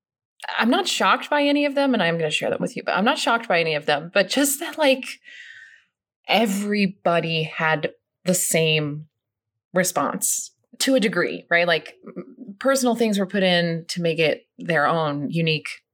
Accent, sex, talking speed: American, female, 180 wpm